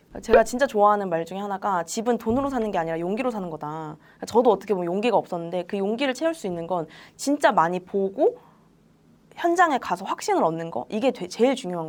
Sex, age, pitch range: female, 20-39, 180-265 Hz